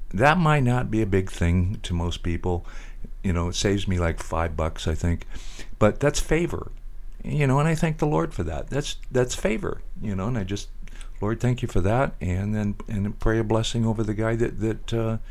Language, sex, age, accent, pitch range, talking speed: English, male, 60-79, American, 85-115 Hz, 225 wpm